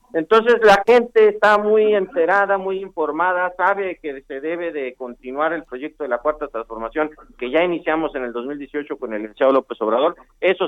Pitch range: 125-170 Hz